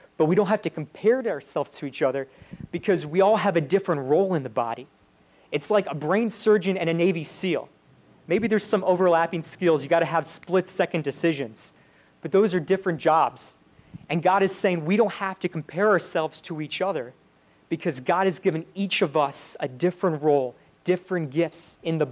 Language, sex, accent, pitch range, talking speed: English, male, American, 150-190 Hz, 200 wpm